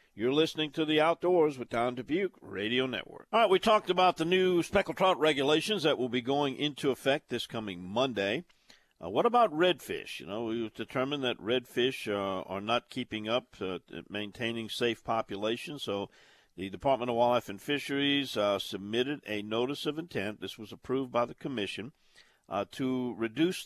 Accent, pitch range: American, 105-145 Hz